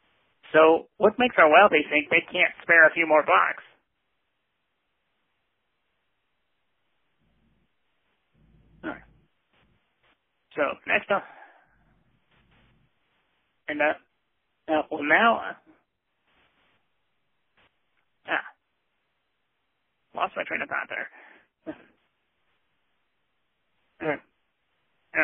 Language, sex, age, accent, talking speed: English, male, 30-49, American, 75 wpm